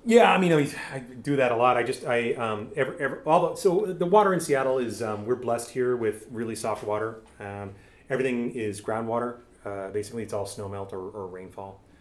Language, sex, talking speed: English, male, 225 wpm